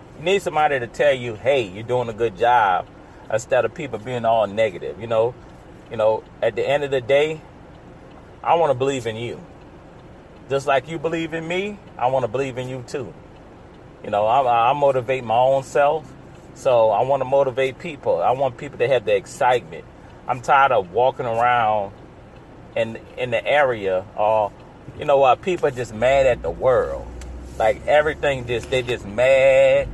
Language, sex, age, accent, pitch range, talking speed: English, male, 30-49, American, 115-150 Hz, 190 wpm